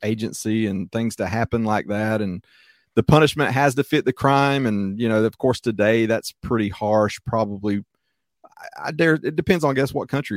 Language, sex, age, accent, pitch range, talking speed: English, male, 30-49, American, 105-125 Hz, 205 wpm